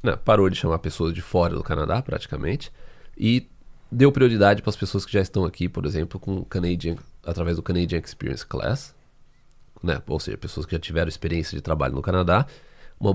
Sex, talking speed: male, 190 wpm